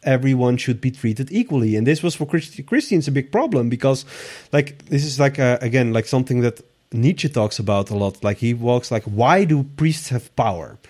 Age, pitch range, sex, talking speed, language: 30-49, 120-155 Hz, male, 210 wpm, English